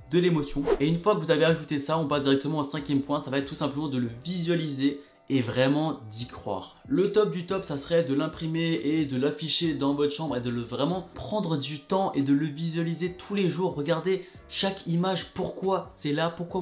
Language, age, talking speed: French, 20-39, 230 wpm